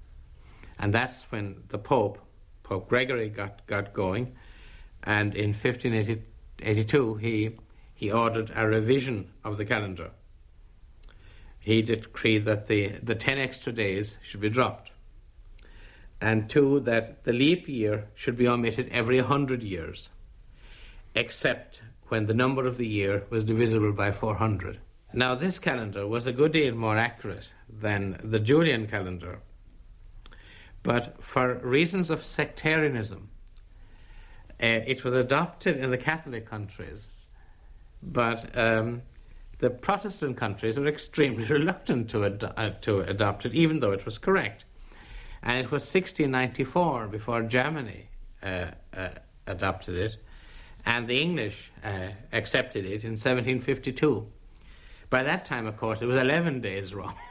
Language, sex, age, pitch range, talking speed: English, male, 60-79, 100-125 Hz, 135 wpm